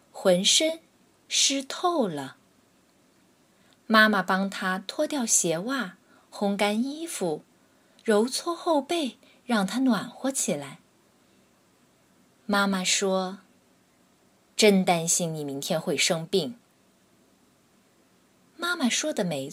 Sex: female